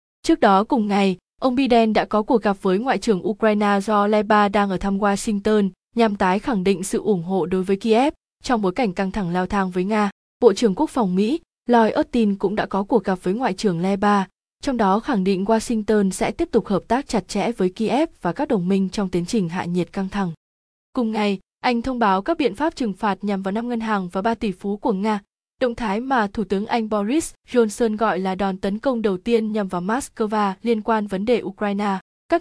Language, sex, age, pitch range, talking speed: Vietnamese, female, 20-39, 195-235 Hz, 230 wpm